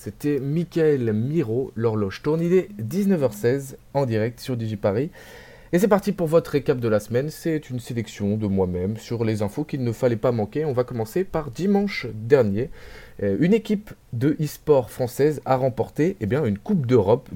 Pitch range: 105-140 Hz